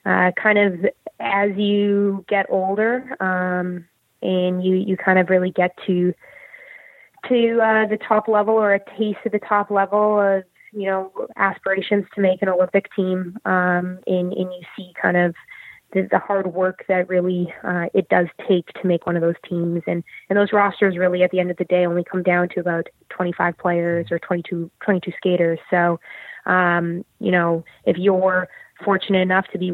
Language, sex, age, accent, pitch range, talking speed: English, female, 20-39, American, 175-200 Hz, 190 wpm